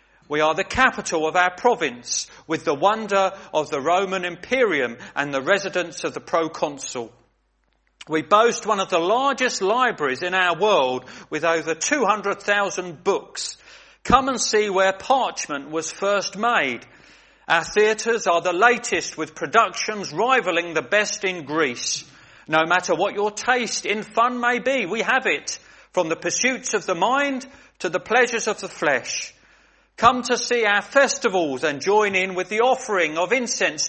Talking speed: 160 wpm